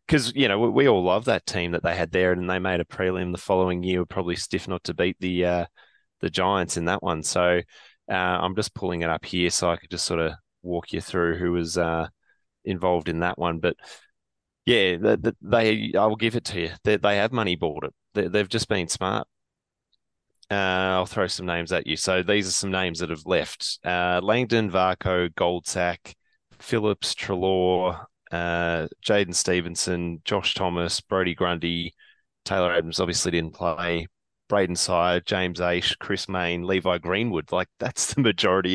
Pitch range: 85-100 Hz